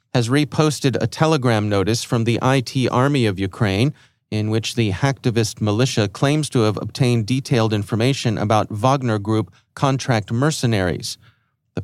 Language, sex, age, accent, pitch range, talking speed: English, male, 40-59, American, 110-130 Hz, 140 wpm